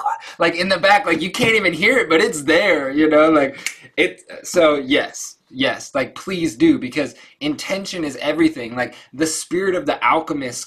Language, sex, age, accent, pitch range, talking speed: English, male, 20-39, American, 125-165 Hz, 185 wpm